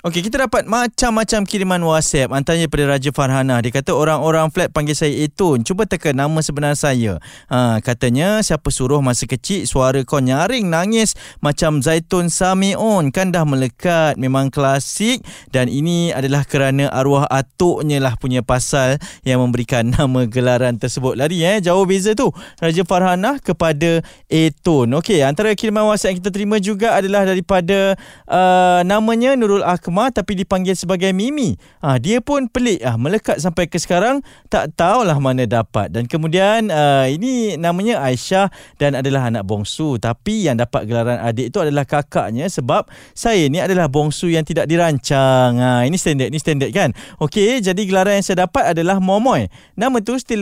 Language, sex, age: Malay, male, 20-39